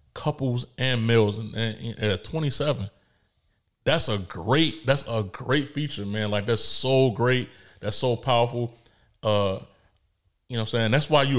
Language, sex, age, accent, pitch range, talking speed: English, male, 30-49, American, 105-125 Hz, 170 wpm